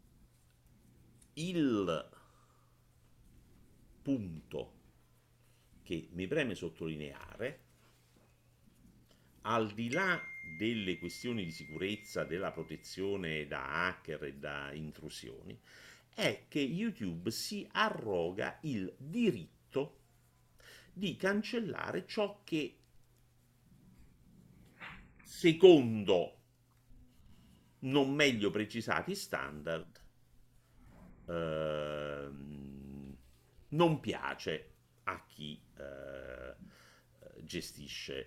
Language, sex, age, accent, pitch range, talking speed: Italian, male, 50-69, native, 75-120 Hz, 65 wpm